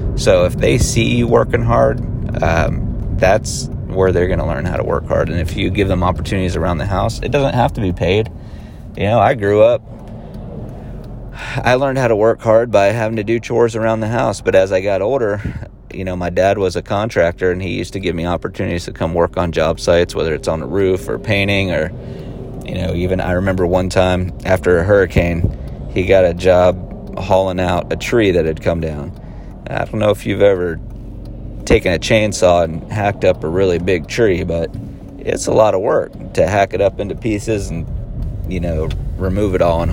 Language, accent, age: English, American, 30-49